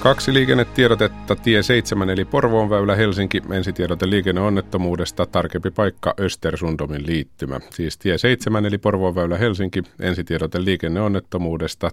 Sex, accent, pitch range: male, native, 80-105 Hz